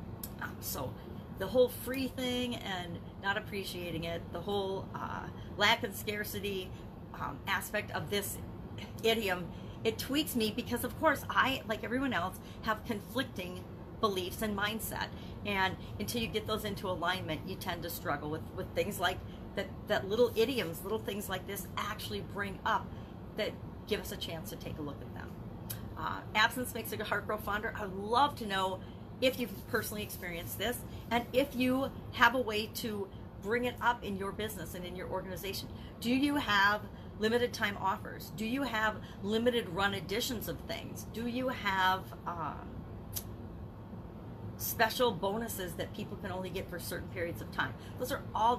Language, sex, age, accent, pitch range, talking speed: English, female, 40-59, American, 195-245 Hz, 170 wpm